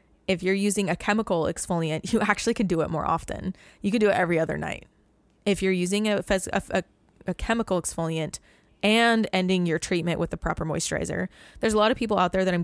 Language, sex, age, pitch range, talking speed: English, female, 20-39, 170-190 Hz, 215 wpm